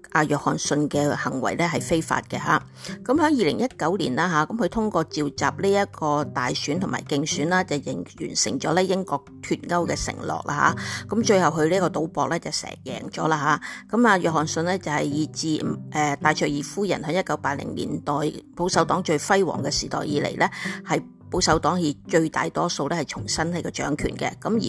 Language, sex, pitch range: Chinese, female, 150-190 Hz